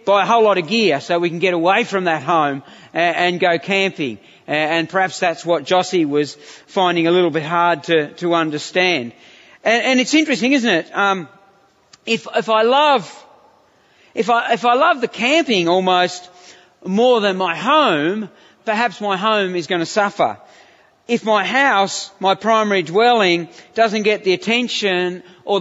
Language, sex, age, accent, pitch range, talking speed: English, male, 40-59, Australian, 180-225 Hz, 170 wpm